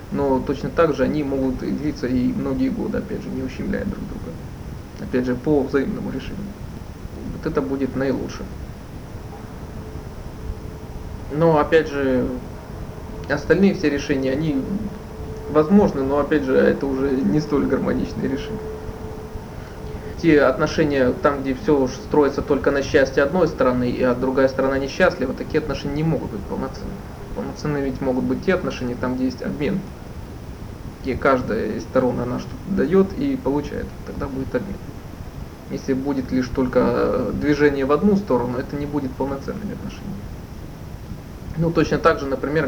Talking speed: 145 wpm